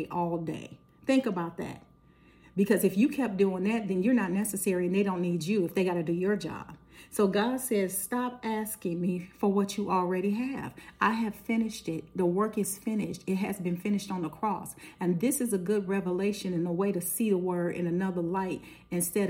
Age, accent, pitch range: 40-59, American, 180-205 Hz